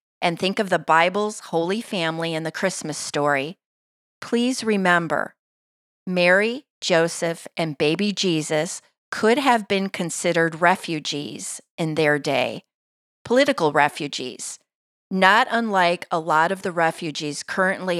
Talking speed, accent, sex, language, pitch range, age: 120 wpm, American, female, English, 155-195 Hz, 40-59